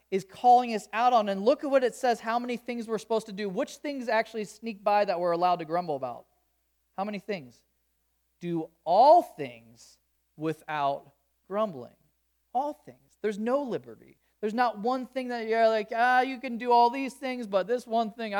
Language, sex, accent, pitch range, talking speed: English, male, American, 170-235 Hz, 195 wpm